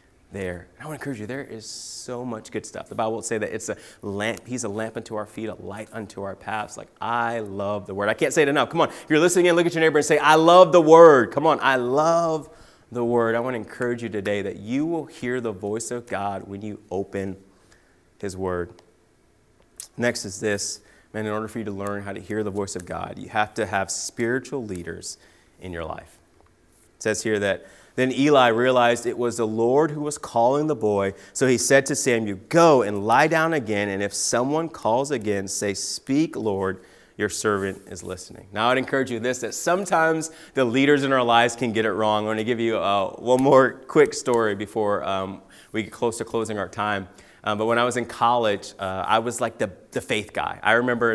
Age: 30-49